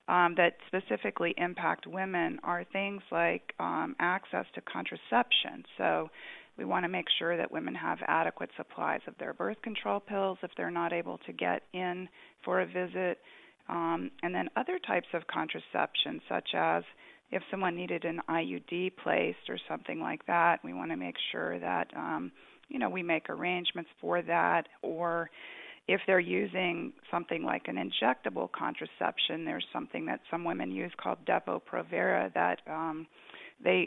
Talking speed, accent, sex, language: 160 wpm, American, female, English